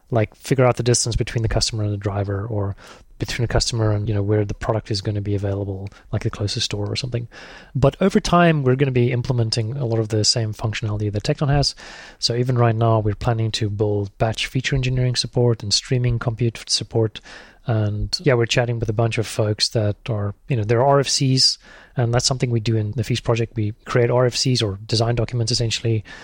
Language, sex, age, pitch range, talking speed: English, male, 30-49, 110-130 Hz, 220 wpm